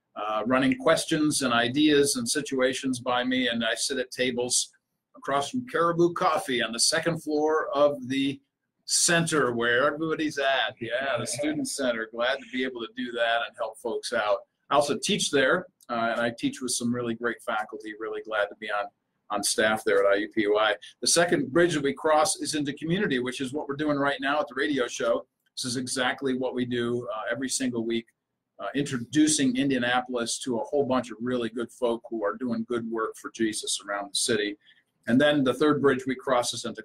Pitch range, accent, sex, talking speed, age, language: 115-145 Hz, American, male, 205 wpm, 50-69, English